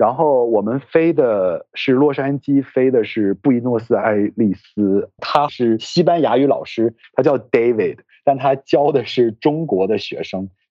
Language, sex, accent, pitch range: Chinese, male, native, 125-180 Hz